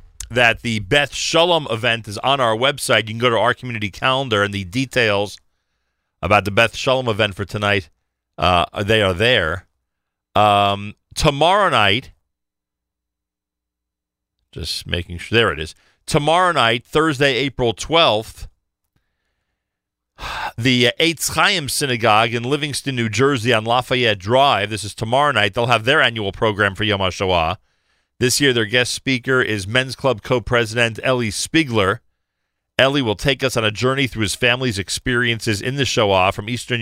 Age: 40-59